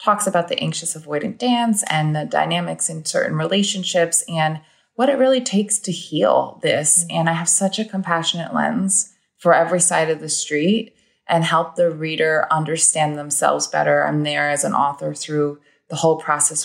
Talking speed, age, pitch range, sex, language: 175 wpm, 20-39, 145-175 Hz, female, English